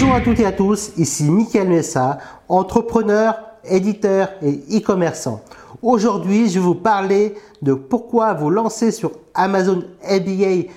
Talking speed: 140 wpm